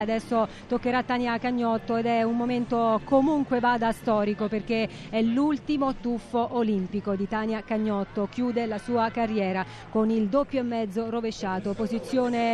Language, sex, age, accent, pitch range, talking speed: Italian, female, 30-49, native, 215-245 Hz, 145 wpm